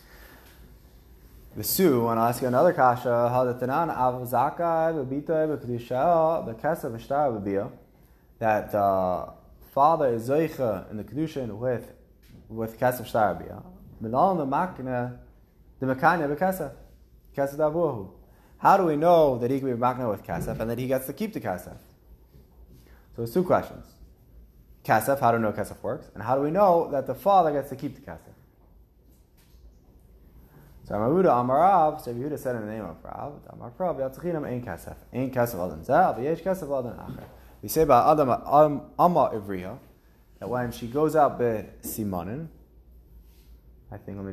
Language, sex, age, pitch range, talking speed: English, male, 20-39, 90-140 Hz, 105 wpm